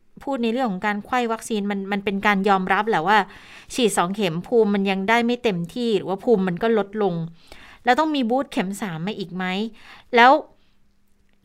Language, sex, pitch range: Thai, female, 185-240 Hz